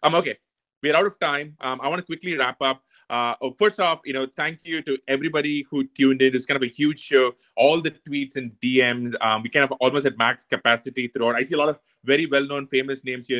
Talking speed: 255 wpm